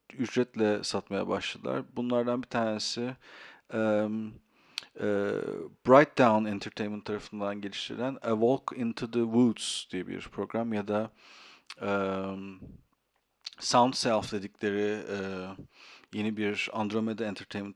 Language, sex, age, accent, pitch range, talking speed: Turkish, male, 50-69, native, 105-120 Hz, 105 wpm